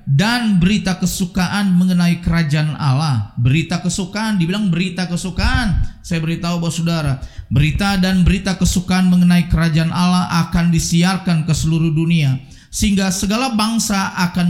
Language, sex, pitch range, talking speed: Indonesian, male, 150-185 Hz, 130 wpm